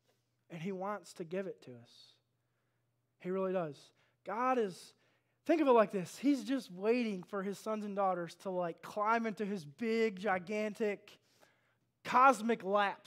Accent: American